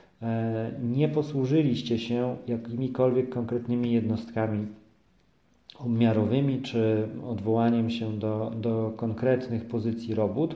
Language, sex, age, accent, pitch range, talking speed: Polish, male, 40-59, native, 110-130 Hz, 85 wpm